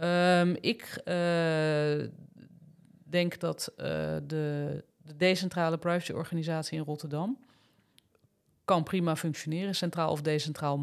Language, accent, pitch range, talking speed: Dutch, Dutch, 145-165 Hz, 100 wpm